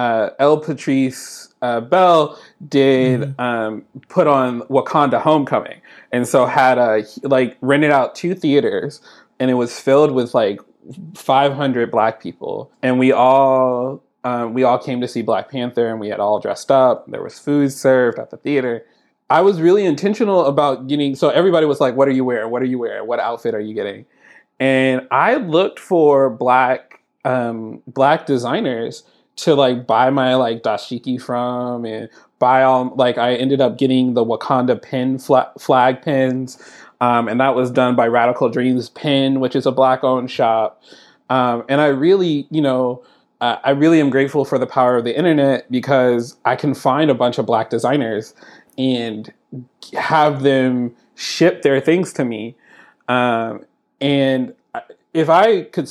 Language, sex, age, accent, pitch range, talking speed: English, male, 20-39, American, 125-140 Hz, 170 wpm